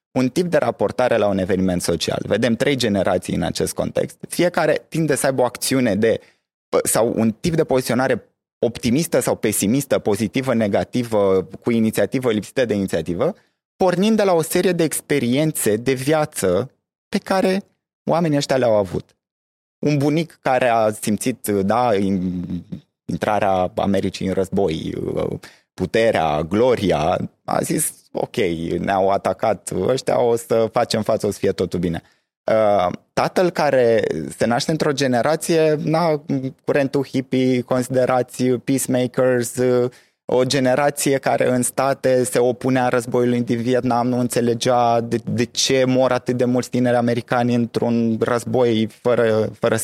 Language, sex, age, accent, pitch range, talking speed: Romanian, male, 20-39, native, 110-135 Hz, 135 wpm